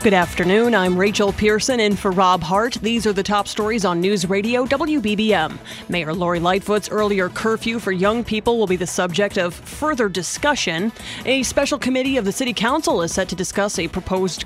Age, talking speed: 30-49, 190 wpm